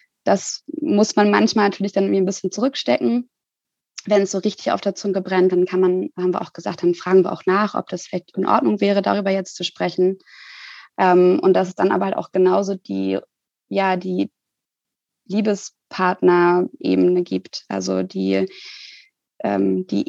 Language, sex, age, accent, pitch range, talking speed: German, female, 20-39, German, 180-195 Hz, 165 wpm